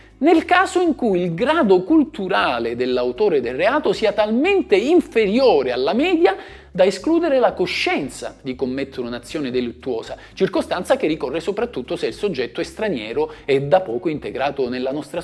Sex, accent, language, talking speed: male, native, Italian, 150 wpm